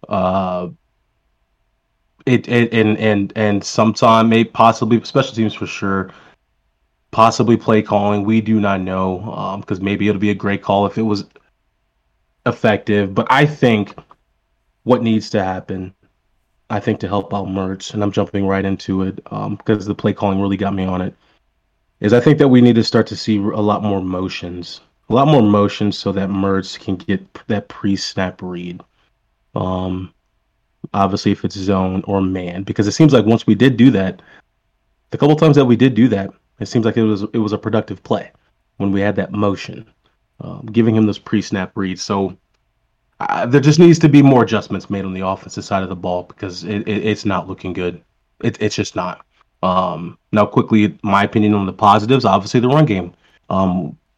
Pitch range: 95-115 Hz